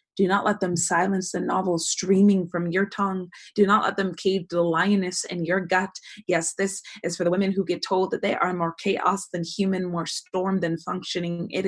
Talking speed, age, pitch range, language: 220 wpm, 20-39, 170-190 Hz, English